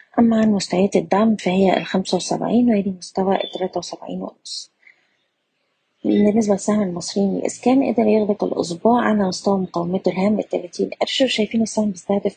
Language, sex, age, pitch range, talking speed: Arabic, female, 20-39, 180-210 Hz, 130 wpm